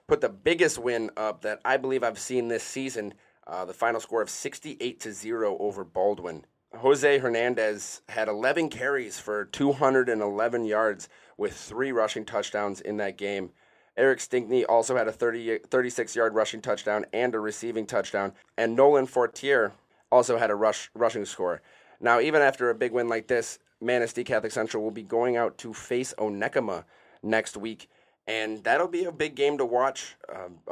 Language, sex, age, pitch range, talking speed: English, male, 30-49, 105-130 Hz, 170 wpm